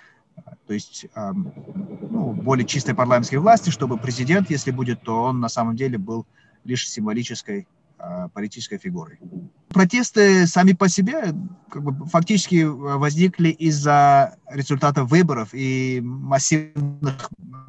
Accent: native